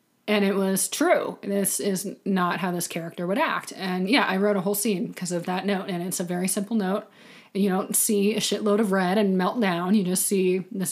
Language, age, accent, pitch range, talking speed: English, 30-49, American, 185-215 Hz, 235 wpm